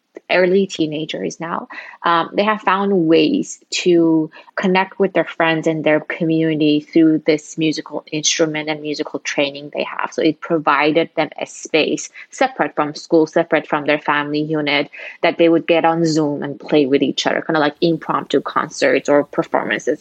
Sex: female